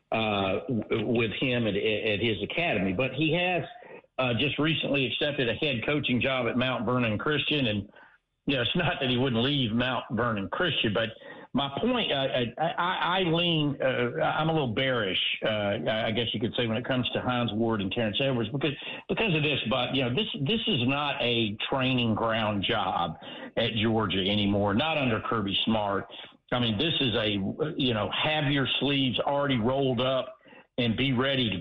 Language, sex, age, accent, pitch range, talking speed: English, male, 50-69, American, 110-145 Hz, 190 wpm